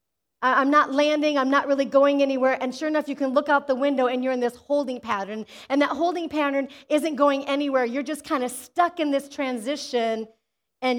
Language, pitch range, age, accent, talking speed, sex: English, 275-350 Hz, 40-59, American, 215 wpm, female